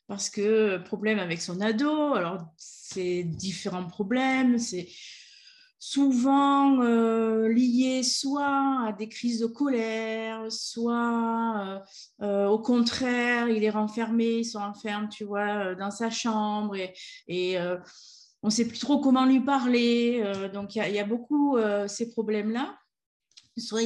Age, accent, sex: 30-49, French, female